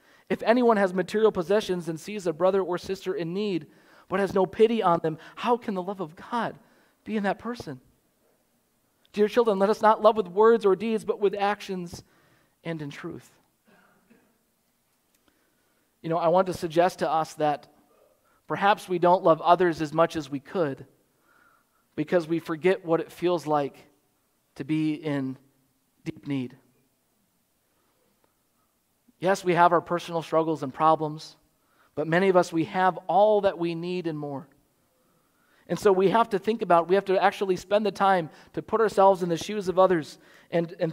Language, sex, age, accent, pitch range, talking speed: English, male, 40-59, American, 160-210 Hz, 175 wpm